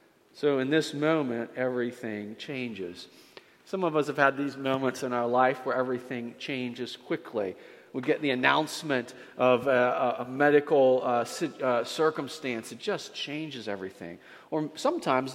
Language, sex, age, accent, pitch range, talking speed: English, male, 40-59, American, 125-145 Hz, 145 wpm